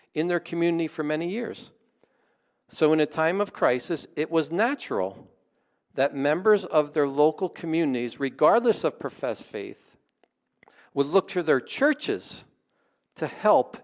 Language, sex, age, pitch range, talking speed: English, male, 50-69, 140-200 Hz, 140 wpm